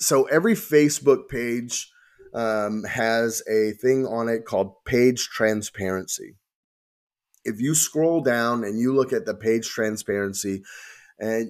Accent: American